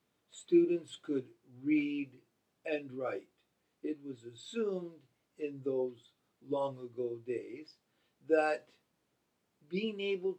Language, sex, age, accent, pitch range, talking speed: English, male, 50-69, American, 140-190 Hz, 90 wpm